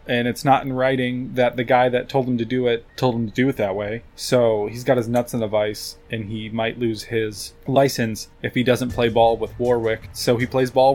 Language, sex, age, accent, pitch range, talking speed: English, male, 20-39, American, 115-140 Hz, 250 wpm